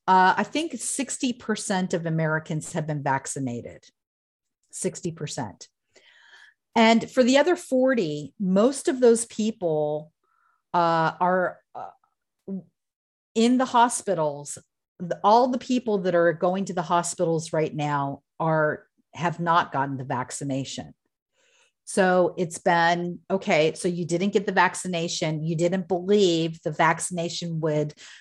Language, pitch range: English, 170-220 Hz